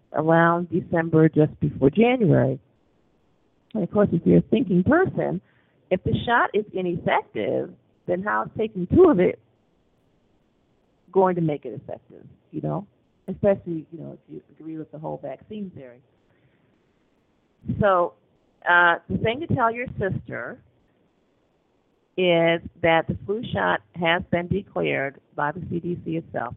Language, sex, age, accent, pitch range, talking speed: English, female, 40-59, American, 145-200 Hz, 140 wpm